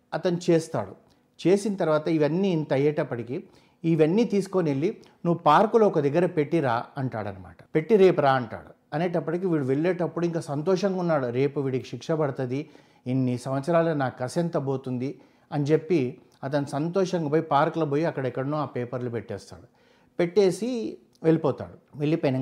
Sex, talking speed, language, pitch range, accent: male, 130 wpm, Telugu, 130-175 Hz, native